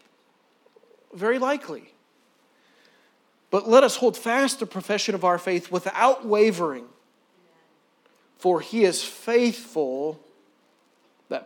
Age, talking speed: 40-59, 100 wpm